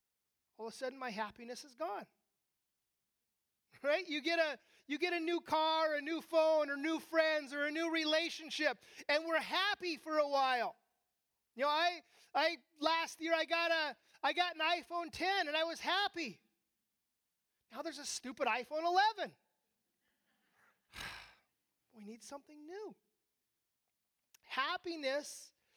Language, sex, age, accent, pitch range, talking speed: English, male, 30-49, American, 255-320 Hz, 145 wpm